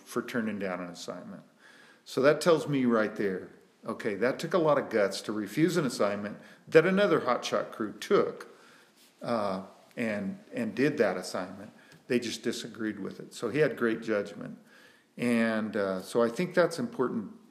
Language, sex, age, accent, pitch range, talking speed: English, male, 50-69, American, 105-145 Hz, 170 wpm